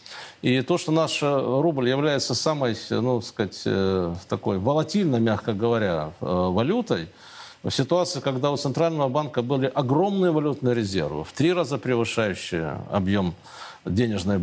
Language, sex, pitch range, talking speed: Russian, male, 115-155 Hz, 135 wpm